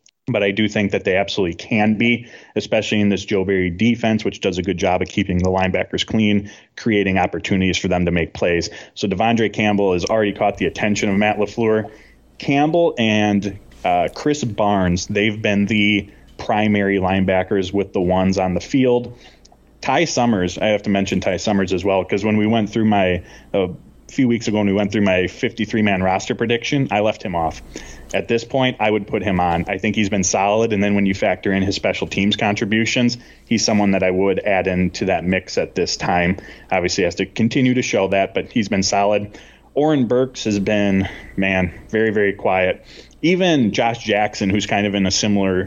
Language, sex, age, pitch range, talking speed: English, male, 20-39, 95-110 Hz, 205 wpm